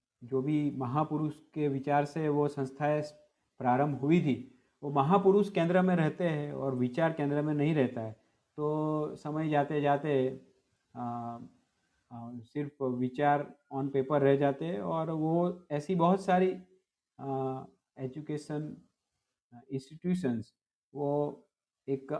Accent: native